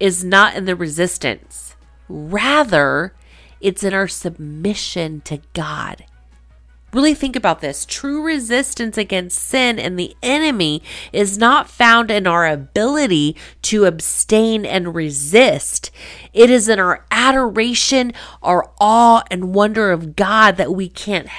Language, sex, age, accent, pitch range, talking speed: English, female, 30-49, American, 150-225 Hz, 130 wpm